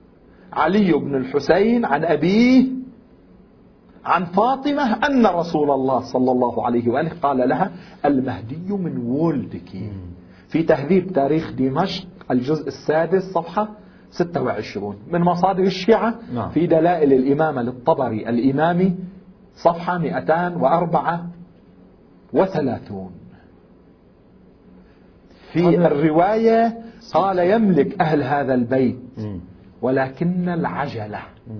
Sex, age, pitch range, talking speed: male, 50-69, 130-185 Hz, 85 wpm